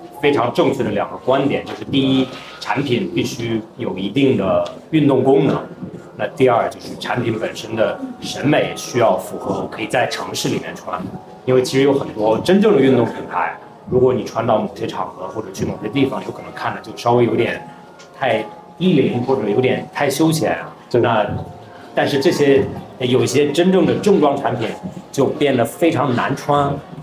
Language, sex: Chinese, male